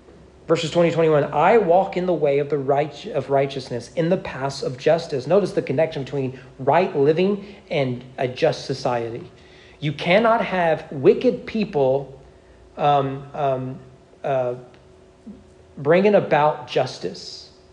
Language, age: English, 40-59